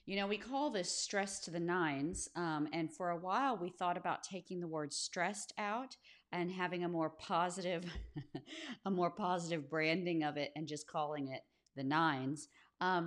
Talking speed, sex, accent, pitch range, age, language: 185 wpm, female, American, 165-220 Hz, 40-59, English